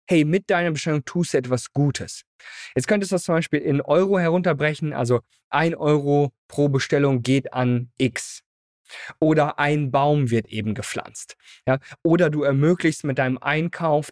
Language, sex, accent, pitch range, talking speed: German, male, German, 125-170 Hz, 155 wpm